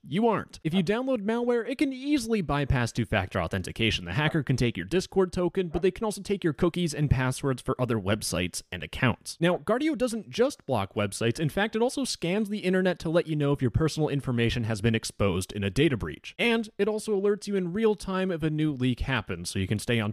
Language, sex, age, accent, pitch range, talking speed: English, male, 30-49, American, 120-195 Hz, 235 wpm